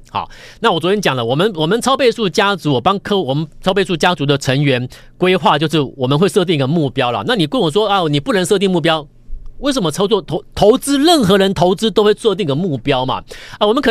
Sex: male